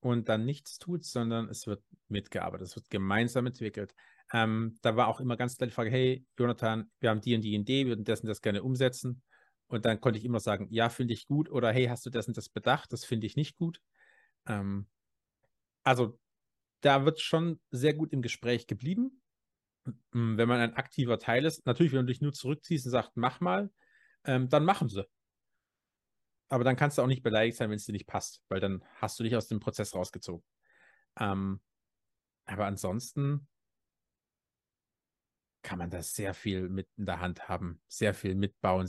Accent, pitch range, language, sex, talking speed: German, 110-135 Hz, German, male, 195 wpm